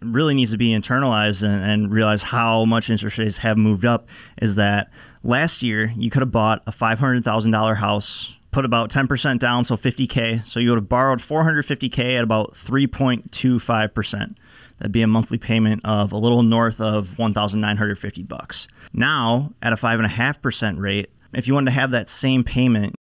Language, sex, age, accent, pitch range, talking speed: English, male, 20-39, American, 110-125 Hz, 180 wpm